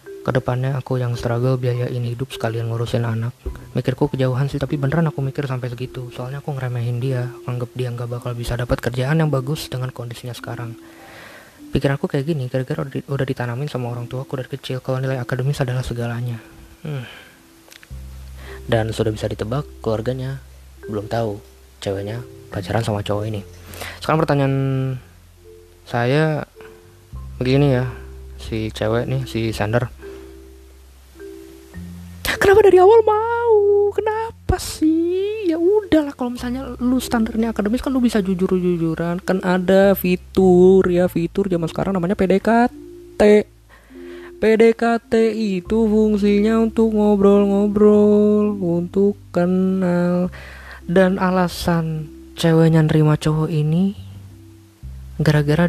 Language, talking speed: Indonesian, 125 wpm